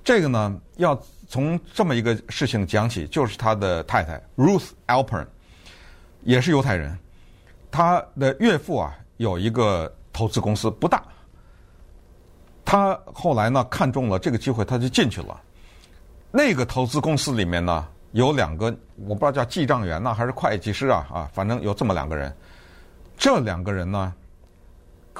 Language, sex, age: Chinese, male, 50-69